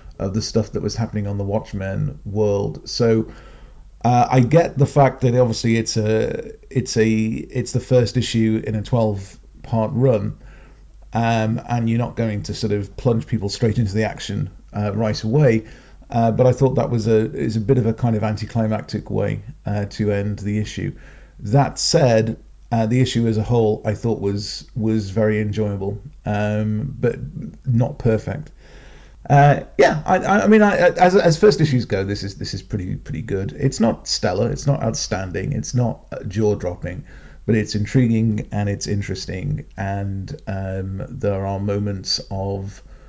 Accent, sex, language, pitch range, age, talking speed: British, male, English, 105-130 Hz, 40-59, 175 wpm